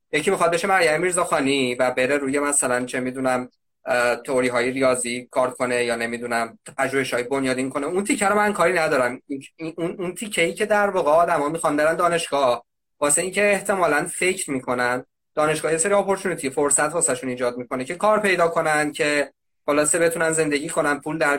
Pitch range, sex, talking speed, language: 130-185 Hz, male, 170 wpm, Persian